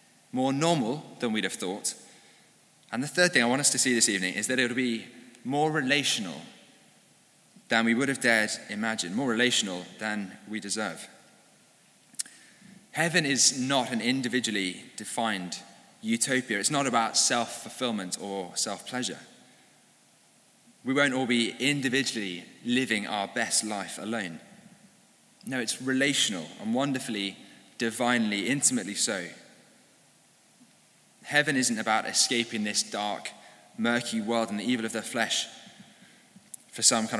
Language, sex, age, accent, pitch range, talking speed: English, male, 20-39, British, 110-135 Hz, 135 wpm